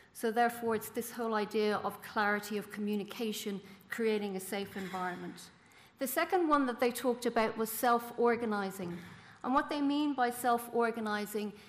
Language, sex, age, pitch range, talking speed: English, female, 40-59, 210-250 Hz, 150 wpm